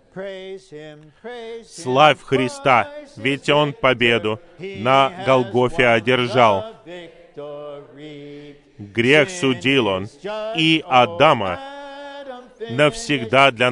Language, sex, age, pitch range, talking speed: Russian, male, 40-59, 125-200 Hz, 65 wpm